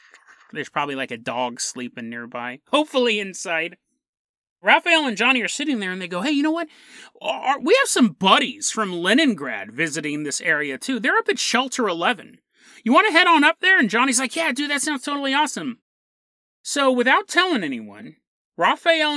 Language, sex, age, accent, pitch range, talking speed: English, male, 30-49, American, 175-265 Hz, 180 wpm